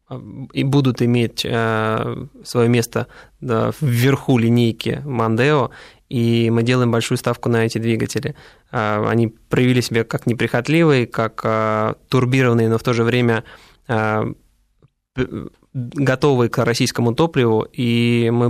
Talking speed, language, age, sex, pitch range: 125 wpm, Russian, 20-39, male, 115-130 Hz